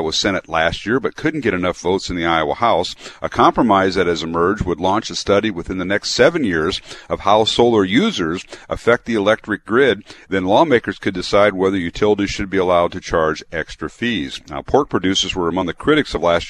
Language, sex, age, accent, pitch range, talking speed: English, male, 50-69, American, 85-110 Hz, 205 wpm